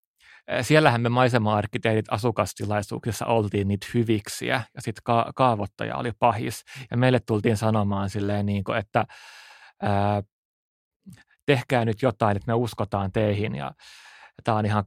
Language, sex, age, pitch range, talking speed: Finnish, male, 30-49, 105-120 Hz, 135 wpm